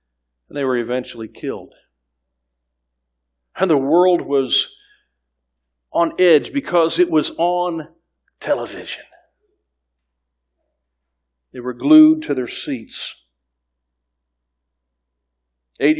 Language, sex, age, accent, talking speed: English, male, 50-69, American, 85 wpm